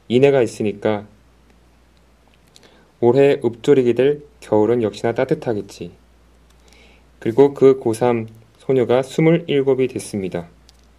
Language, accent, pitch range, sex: Korean, native, 110-135 Hz, male